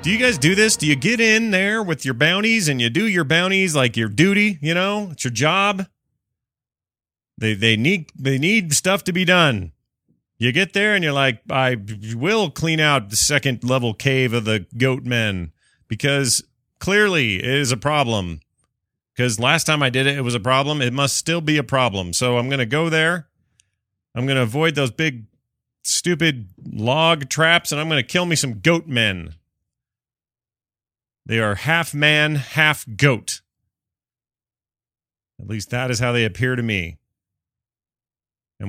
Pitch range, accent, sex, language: 110-160 Hz, American, male, English